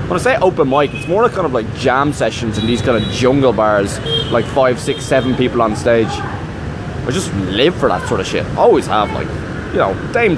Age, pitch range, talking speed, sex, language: 20-39, 115-130 Hz, 225 wpm, male, English